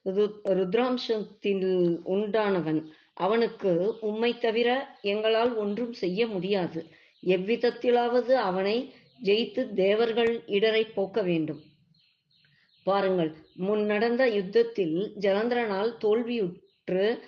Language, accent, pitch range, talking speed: Tamil, native, 185-235 Hz, 75 wpm